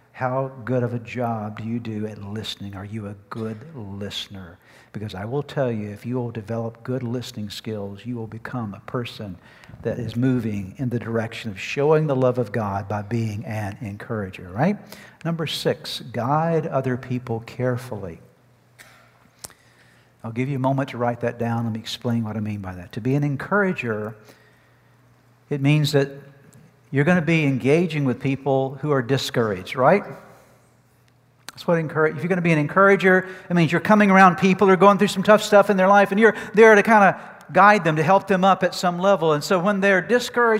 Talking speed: 200 wpm